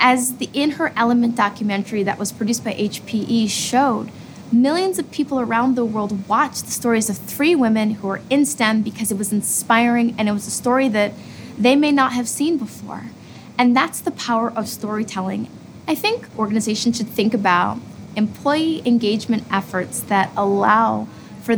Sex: female